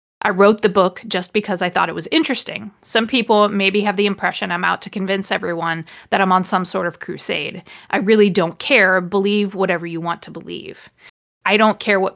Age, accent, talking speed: 30-49, American, 210 wpm